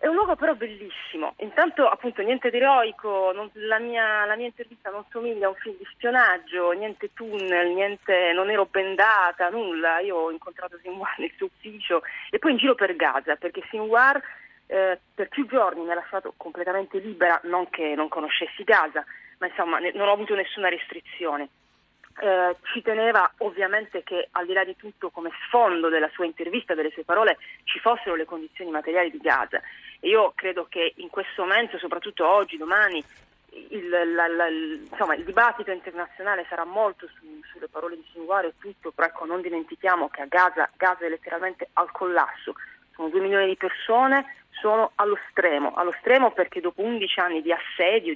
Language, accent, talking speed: Italian, native, 180 wpm